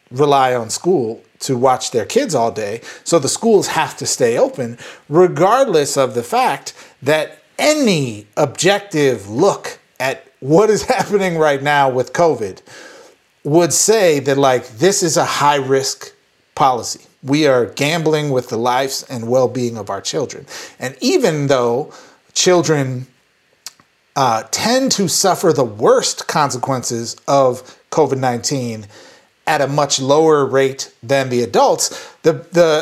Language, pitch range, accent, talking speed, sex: English, 130-180 Hz, American, 145 wpm, male